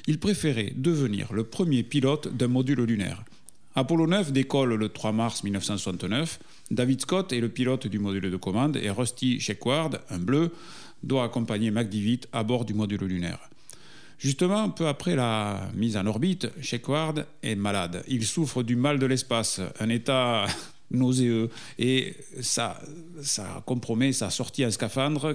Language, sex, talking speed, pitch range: French, male, 155 wpm, 115-150 Hz